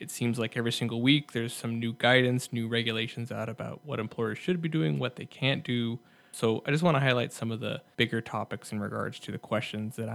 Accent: American